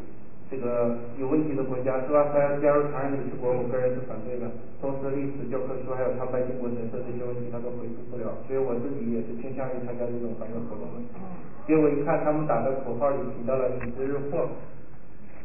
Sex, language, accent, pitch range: male, Chinese, native, 125-150 Hz